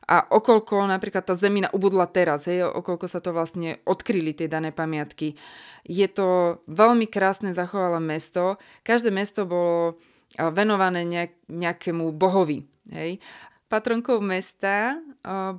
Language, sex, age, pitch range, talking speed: Slovak, female, 20-39, 170-195 Hz, 125 wpm